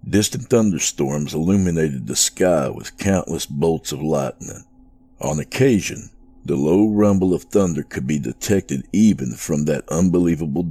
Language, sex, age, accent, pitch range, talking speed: English, male, 60-79, American, 80-105 Hz, 135 wpm